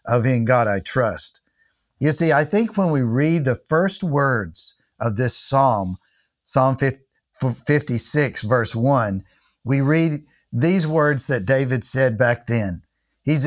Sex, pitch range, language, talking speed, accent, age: male, 120-160 Hz, English, 145 wpm, American, 50-69